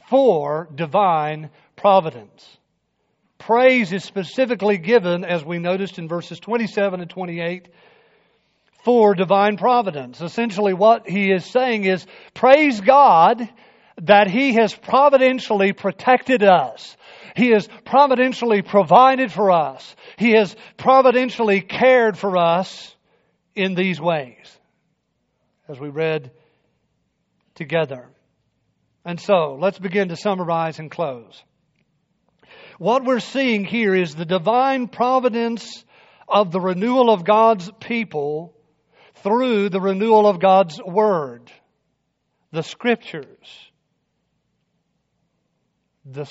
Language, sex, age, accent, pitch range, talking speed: English, male, 50-69, American, 165-225 Hz, 105 wpm